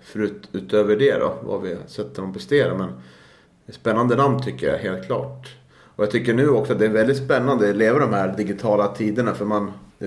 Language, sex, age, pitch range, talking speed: Swedish, male, 30-49, 90-110 Hz, 215 wpm